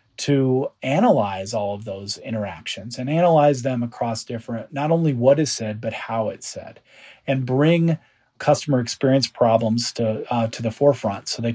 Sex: male